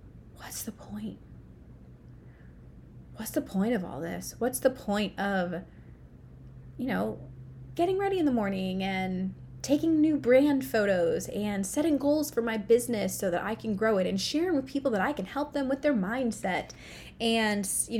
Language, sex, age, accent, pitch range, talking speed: English, female, 20-39, American, 190-265 Hz, 170 wpm